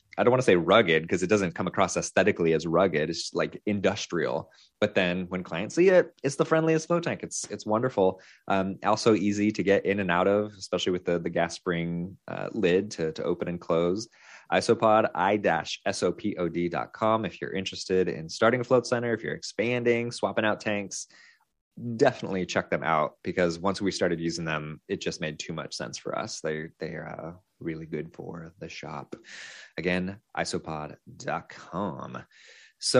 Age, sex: 20-39, male